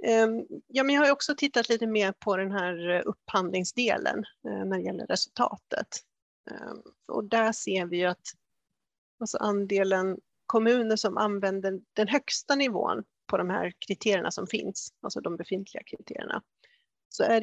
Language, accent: Swedish, native